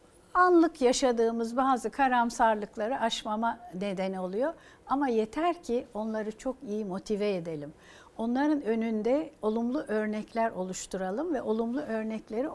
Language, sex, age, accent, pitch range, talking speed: Turkish, female, 60-79, native, 195-245 Hz, 110 wpm